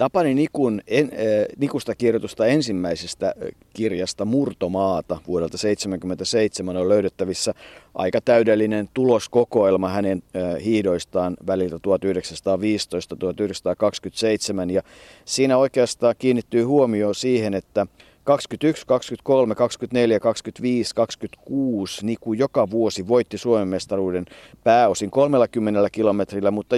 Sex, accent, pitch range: male, native, 100-120 Hz